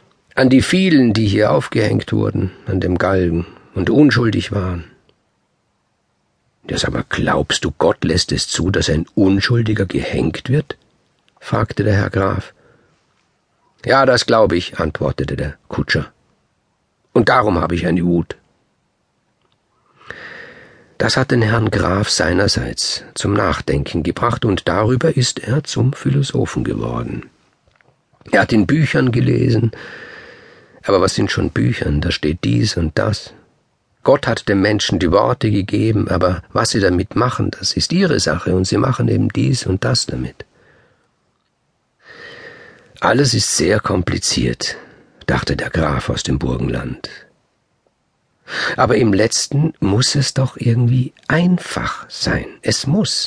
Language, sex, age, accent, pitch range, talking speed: German, male, 50-69, German, 95-130 Hz, 135 wpm